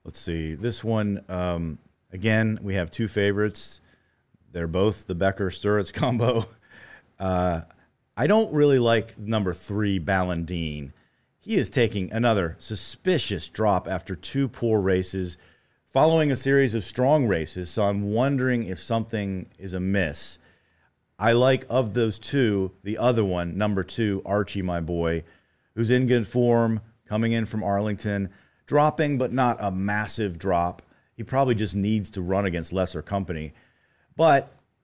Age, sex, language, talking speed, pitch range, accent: 40-59, male, English, 145 wpm, 90-120 Hz, American